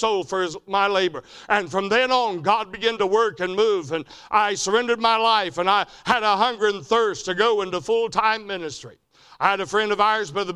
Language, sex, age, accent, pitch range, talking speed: English, male, 60-79, American, 190-220 Hz, 220 wpm